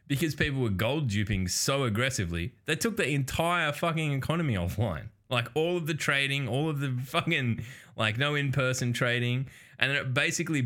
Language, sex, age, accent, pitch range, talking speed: English, male, 20-39, Australian, 95-130 Hz, 175 wpm